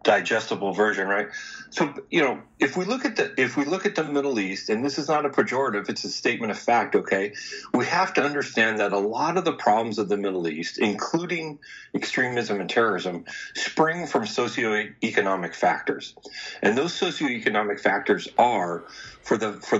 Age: 40-59